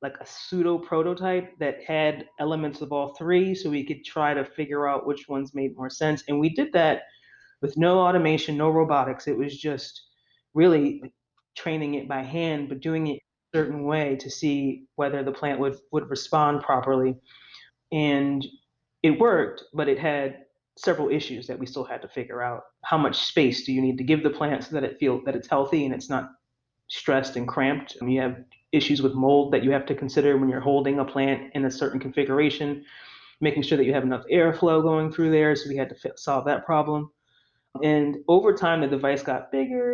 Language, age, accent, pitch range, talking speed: English, 30-49, American, 135-160 Hz, 205 wpm